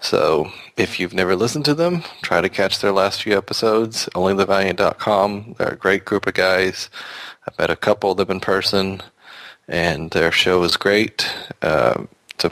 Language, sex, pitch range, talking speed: English, male, 95-110 Hz, 175 wpm